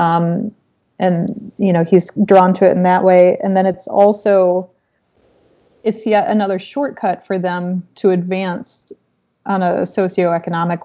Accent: American